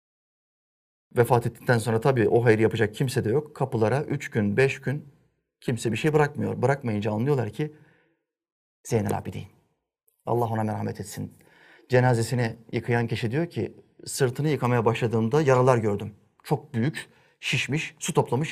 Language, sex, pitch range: Turkish, male, 110-140 Hz